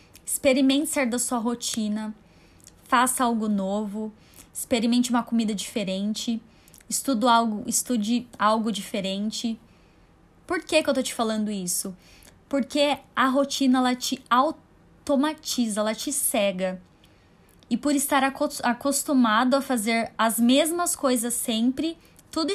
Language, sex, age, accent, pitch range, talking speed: Portuguese, female, 10-29, Brazilian, 215-275 Hz, 115 wpm